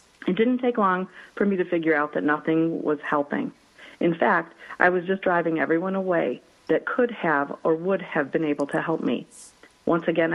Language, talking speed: English, 195 wpm